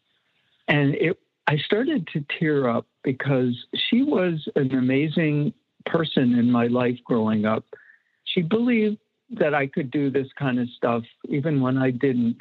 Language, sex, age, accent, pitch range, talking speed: English, male, 60-79, American, 135-210 Hz, 150 wpm